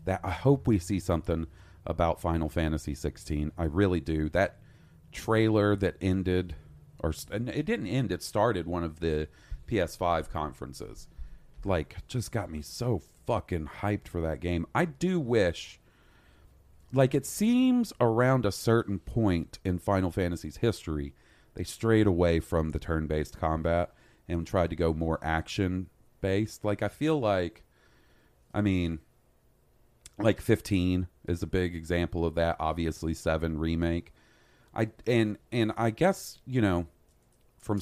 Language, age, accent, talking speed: English, 40-59, American, 145 wpm